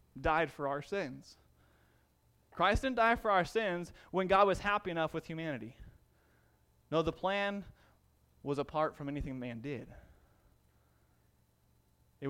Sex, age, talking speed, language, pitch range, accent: male, 20-39, 130 wpm, English, 130-200 Hz, American